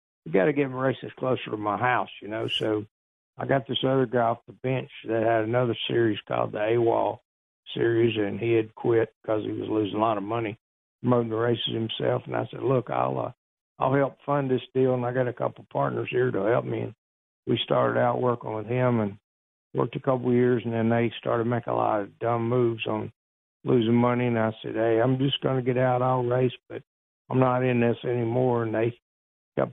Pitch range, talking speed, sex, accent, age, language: 115-125 Hz, 225 wpm, male, American, 60-79, English